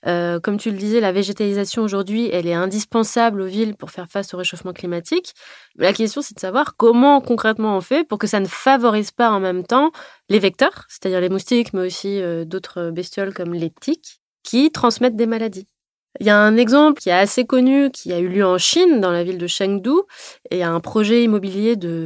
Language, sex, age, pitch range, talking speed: French, female, 20-39, 180-235 Hz, 215 wpm